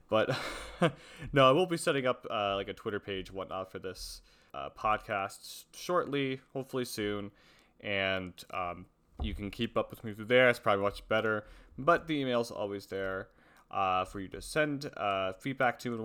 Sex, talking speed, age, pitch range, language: male, 185 wpm, 30-49, 100-135 Hz, English